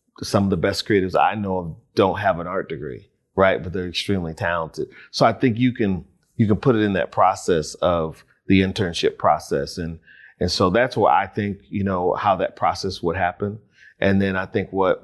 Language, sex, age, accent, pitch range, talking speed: English, male, 40-59, American, 90-105 Hz, 210 wpm